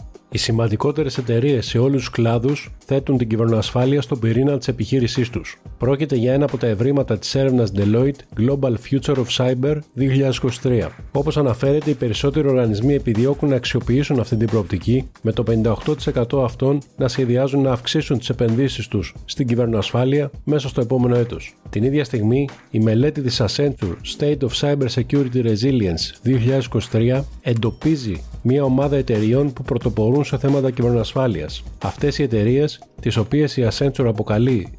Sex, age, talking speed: male, 40-59, 150 wpm